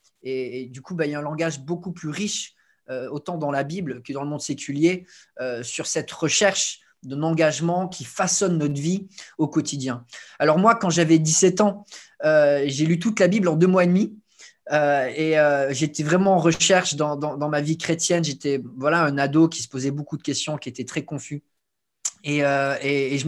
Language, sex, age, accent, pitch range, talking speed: French, male, 20-39, French, 145-175 Hz, 215 wpm